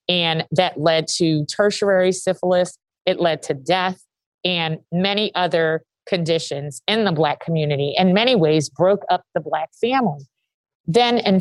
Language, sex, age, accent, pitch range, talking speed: English, female, 30-49, American, 170-220 Hz, 145 wpm